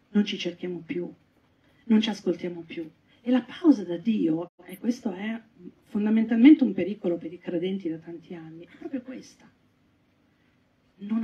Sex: female